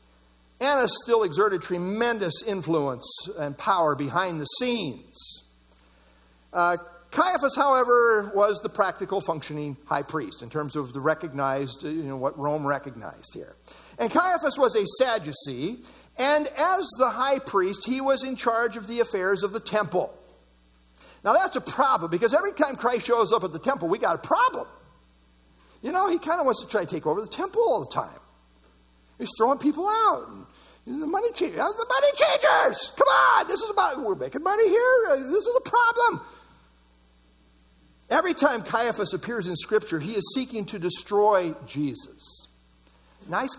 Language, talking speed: English, 165 wpm